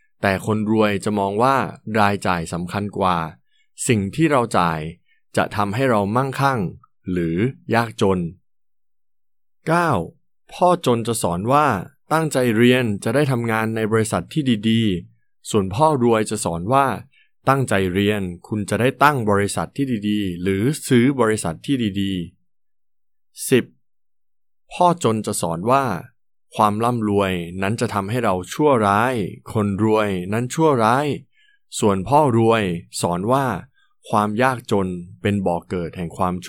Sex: male